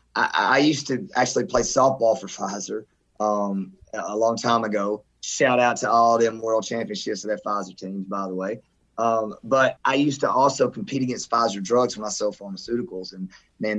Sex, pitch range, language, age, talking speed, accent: male, 110-135 Hz, English, 30-49, 190 wpm, American